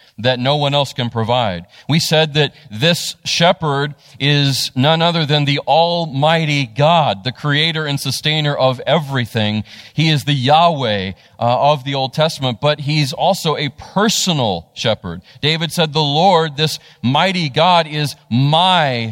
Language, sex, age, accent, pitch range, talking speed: English, male, 40-59, American, 120-150 Hz, 150 wpm